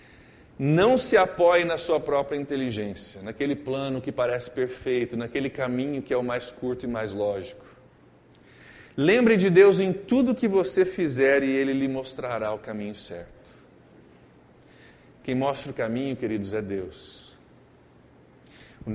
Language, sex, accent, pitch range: Portuguese, male, Brazilian, 110-135 Hz